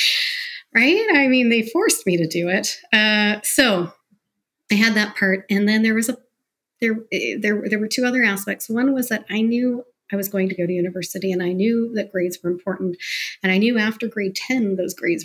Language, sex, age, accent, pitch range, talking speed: English, female, 40-59, American, 180-225 Hz, 215 wpm